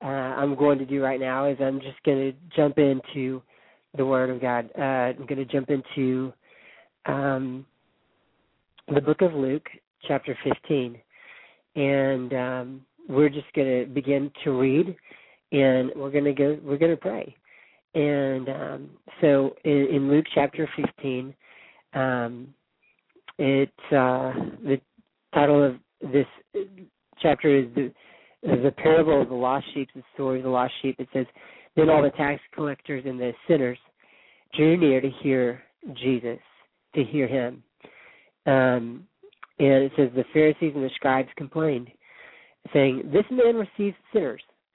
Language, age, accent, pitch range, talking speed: English, 40-59, American, 130-150 Hz, 150 wpm